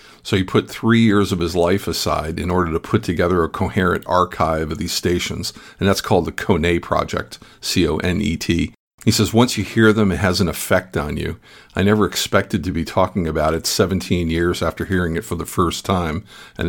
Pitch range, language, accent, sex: 85-105 Hz, English, American, male